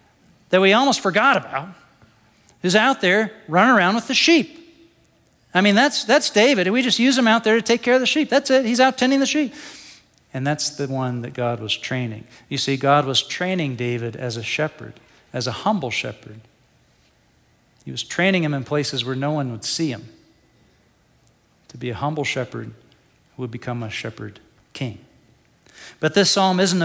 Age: 40-59